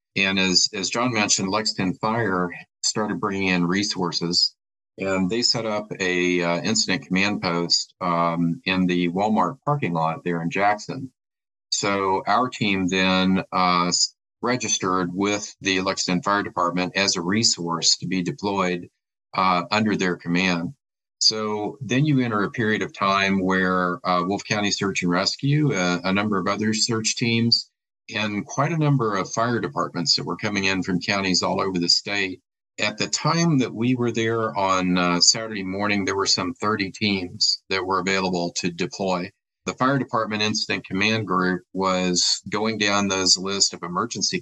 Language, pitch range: English, 90-110 Hz